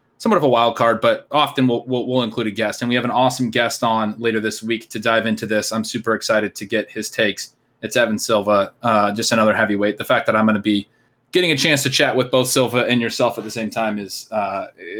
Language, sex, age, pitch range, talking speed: English, male, 20-39, 110-130 Hz, 255 wpm